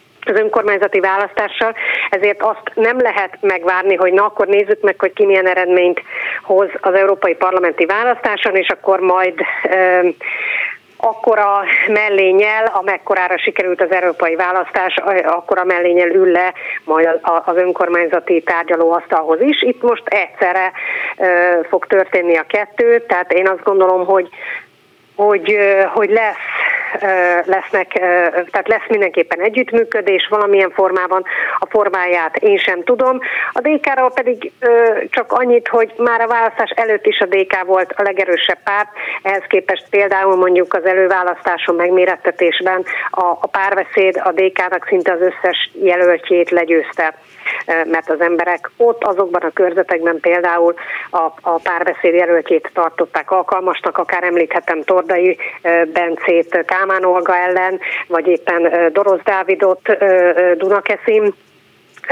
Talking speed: 120 wpm